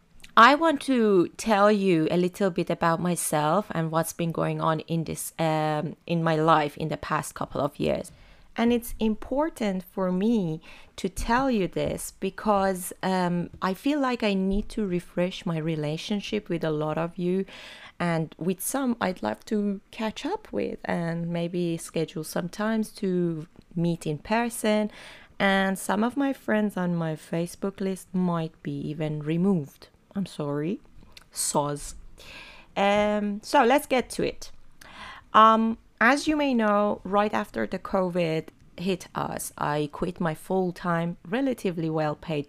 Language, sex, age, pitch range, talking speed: Persian, female, 20-39, 165-210 Hz, 155 wpm